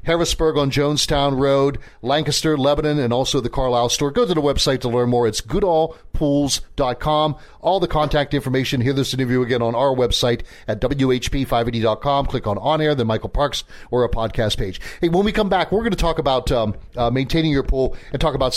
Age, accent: 40-59, American